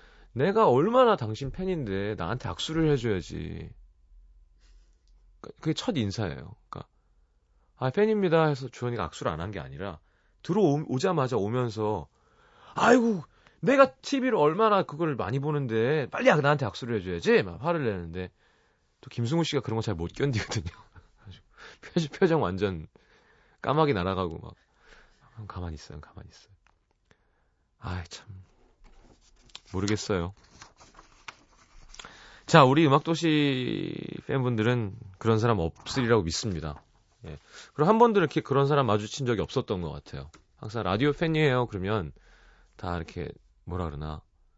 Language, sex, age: Korean, male, 30-49